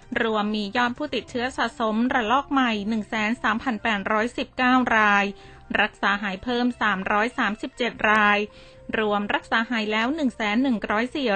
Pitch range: 210-250 Hz